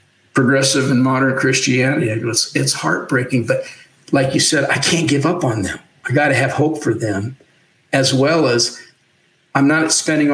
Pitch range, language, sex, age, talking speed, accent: 120-140 Hz, English, male, 50-69, 170 wpm, American